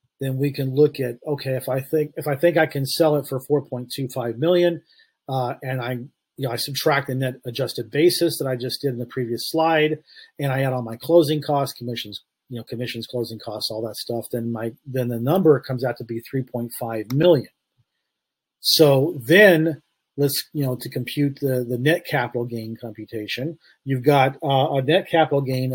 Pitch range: 120-145 Hz